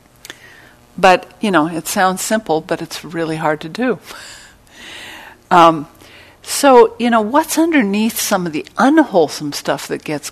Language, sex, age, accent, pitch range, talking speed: English, female, 60-79, American, 155-220 Hz, 145 wpm